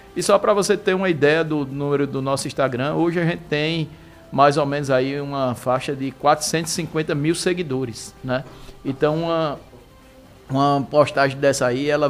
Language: Portuguese